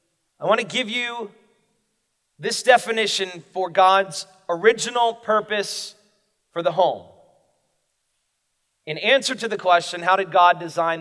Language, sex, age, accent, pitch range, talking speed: English, male, 40-59, American, 155-210 Hz, 125 wpm